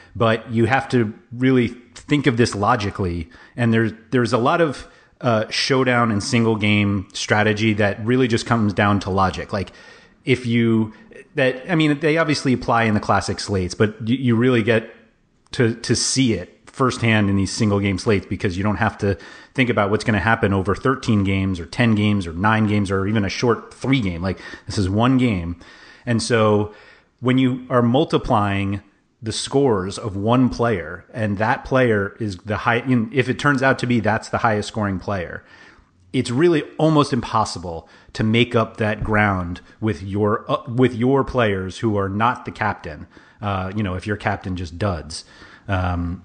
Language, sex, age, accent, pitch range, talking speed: English, male, 30-49, American, 100-120 Hz, 180 wpm